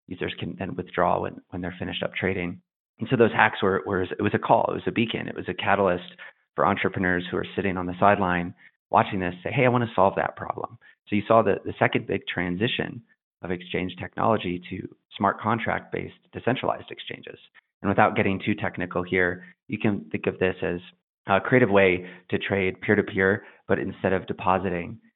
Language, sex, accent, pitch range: English, male, American, 90-105 Hz